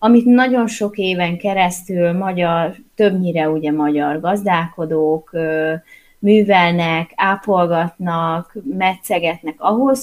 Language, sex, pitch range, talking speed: Hungarian, female, 170-220 Hz, 85 wpm